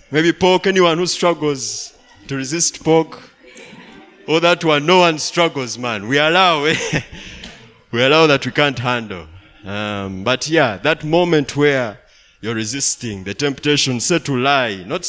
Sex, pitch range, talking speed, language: male, 100-155 Hz, 150 wpm, English